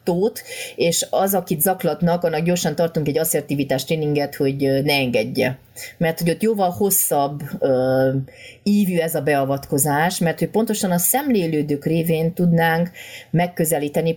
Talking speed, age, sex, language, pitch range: 135 wpm, 30-49, female, Hungarian, 145-185 Hz